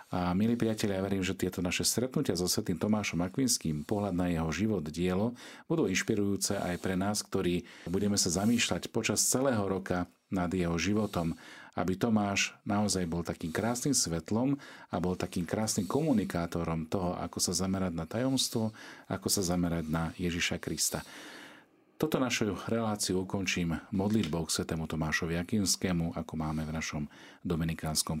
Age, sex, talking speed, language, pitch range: 40-59, male, 150 wpm, Slovak, 85-110 Hz